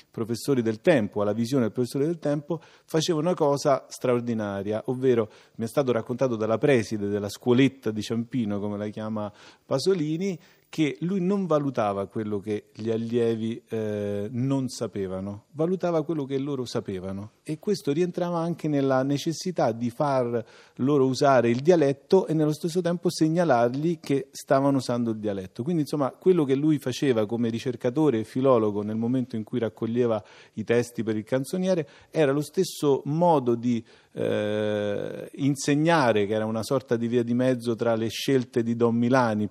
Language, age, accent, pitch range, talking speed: Italian, 40-59, native, 115-150 Hz, 165 wpm